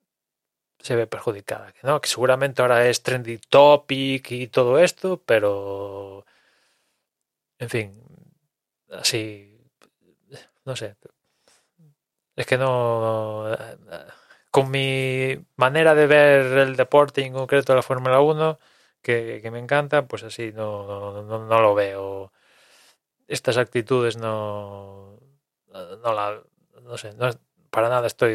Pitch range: 110-130 Hz